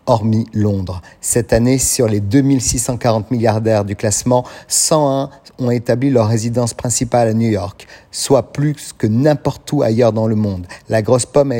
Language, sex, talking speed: French, male, 165 wpm